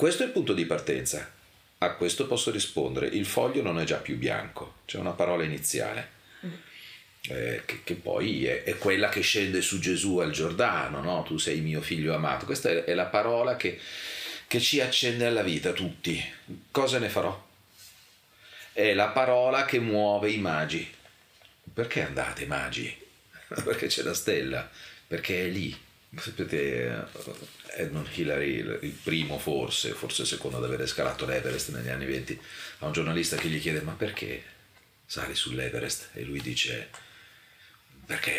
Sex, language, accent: male, Italian, native